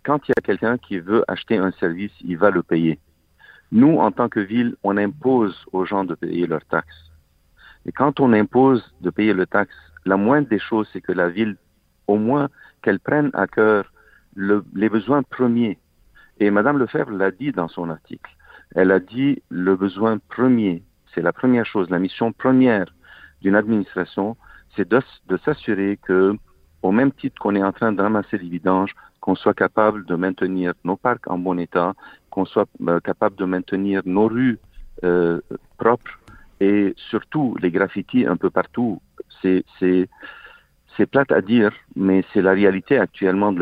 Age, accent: 50-69, French